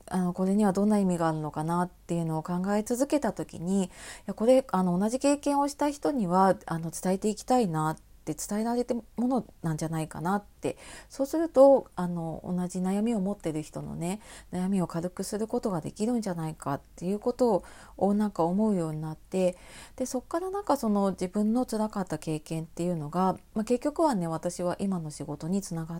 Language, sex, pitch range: Japanese, female, 165-220 Hz